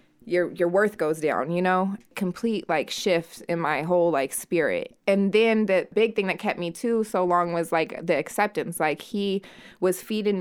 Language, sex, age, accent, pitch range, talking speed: English, female, 20-39, American, 170-210 Hz, 195 wpm